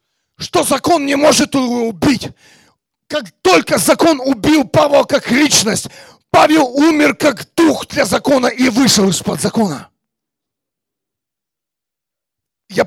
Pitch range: 235-295 Hz